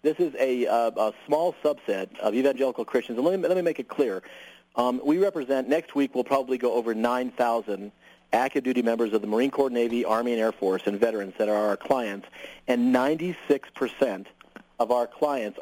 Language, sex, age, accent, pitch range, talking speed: English, male, 40-59, American, 115-135 Hz, 190 wpm